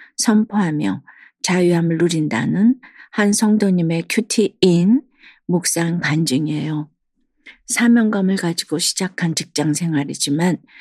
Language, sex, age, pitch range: Korean, female, 50-69, 165-210 Hz